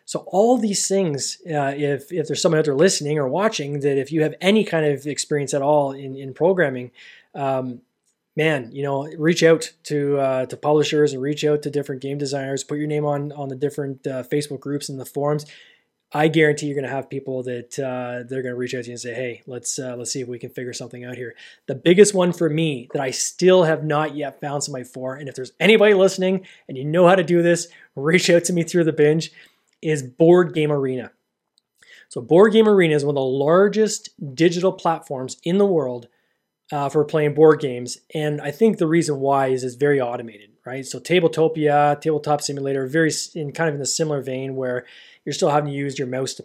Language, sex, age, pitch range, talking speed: English, male, 20-39, 130-155 Hz, 225 wpm